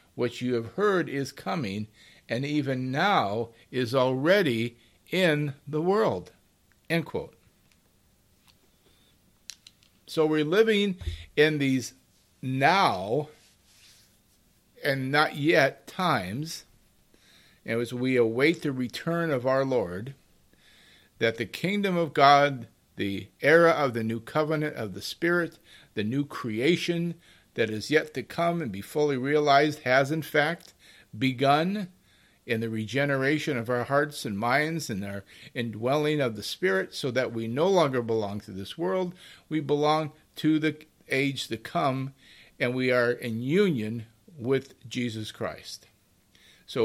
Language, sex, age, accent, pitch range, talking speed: English, male, 50-69, American, 115-155 Hz, 135 wpm